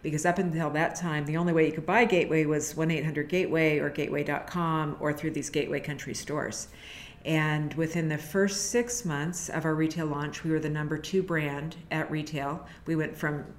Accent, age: American, 50-69